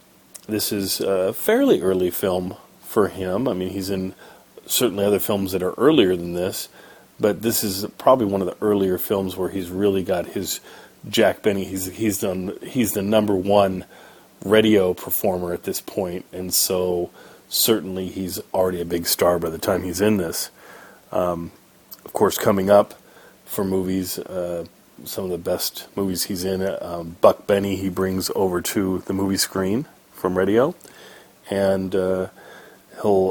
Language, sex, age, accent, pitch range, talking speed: English, male, 40-59, American, 90-100 Hz, 165 wpm